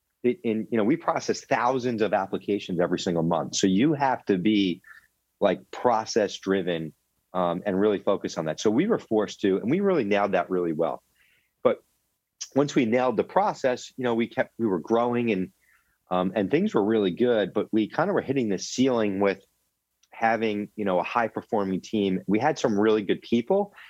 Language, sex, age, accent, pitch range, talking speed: English, male, 30-49, American, 100-130 Hz, 200 wpm